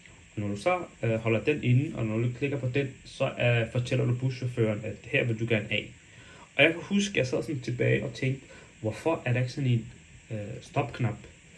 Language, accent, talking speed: Danish, native, 220 wpm